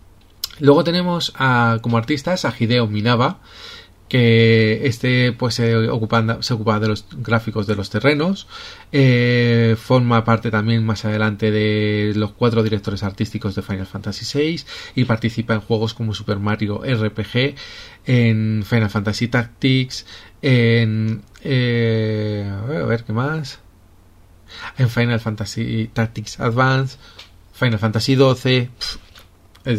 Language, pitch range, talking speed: Spanish, 105-125 Hz, 130 wpm